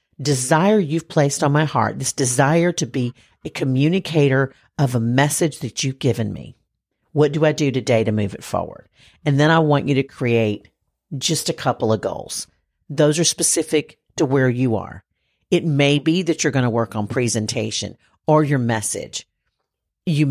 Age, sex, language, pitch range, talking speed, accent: 50-69, female, English, 115-145 Hz, 180 wpm, American